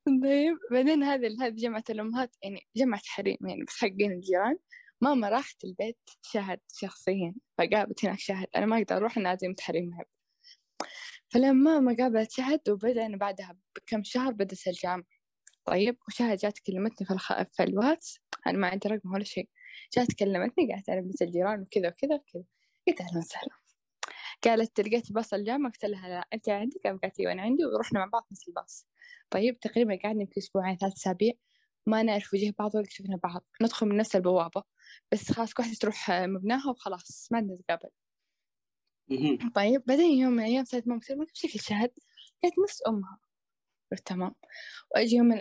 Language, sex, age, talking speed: Arabic, female, 10-29, 165 wpm